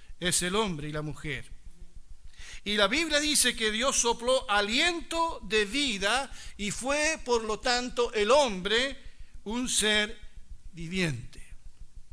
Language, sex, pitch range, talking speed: Spanish, male, 200-270 Hz, 130 wpm